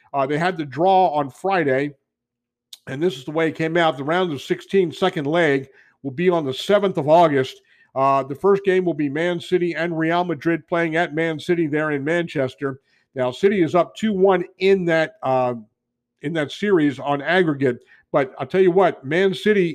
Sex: male